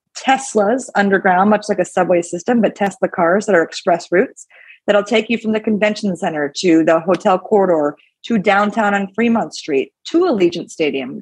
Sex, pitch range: female, 180-210 Hz